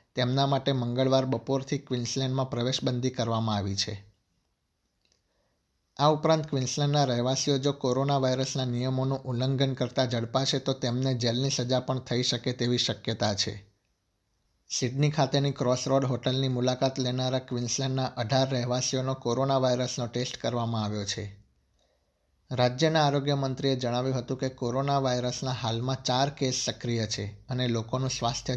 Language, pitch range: Gujarati, 115-135 Hz